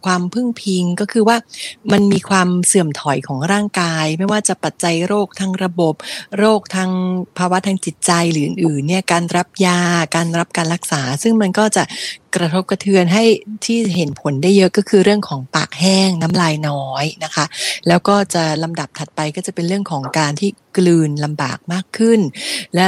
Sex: female